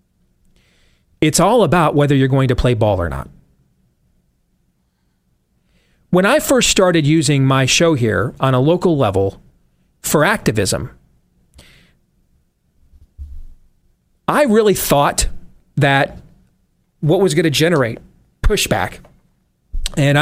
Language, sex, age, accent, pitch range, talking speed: English, male, 40-59, American, 125-170 Hz, 105 wpm